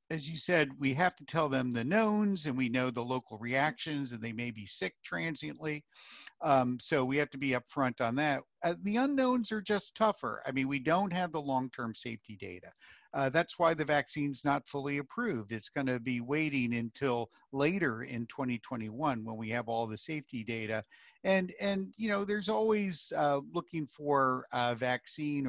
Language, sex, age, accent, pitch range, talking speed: English, male, 50-69, American, 125-165 Hz, 190 wpm